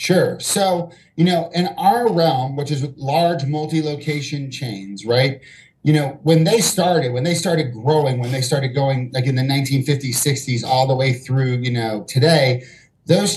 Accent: American